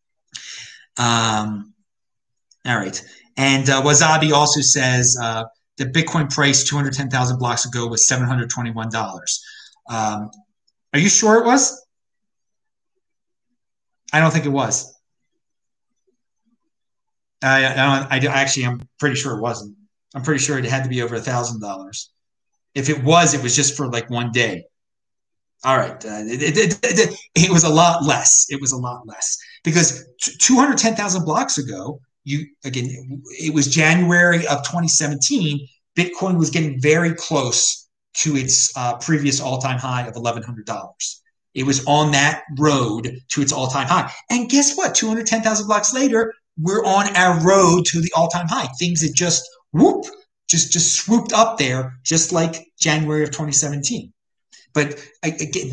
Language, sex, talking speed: English, male, 150 wpm